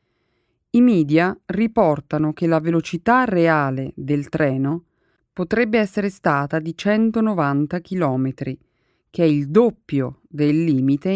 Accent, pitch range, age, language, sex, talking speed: native, 145-195 Hz, 30-49, Italian, female, 115 wpm